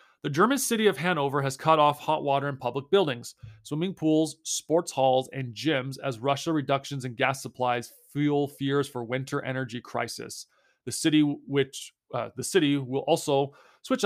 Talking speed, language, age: 170 wpm, English, 30-49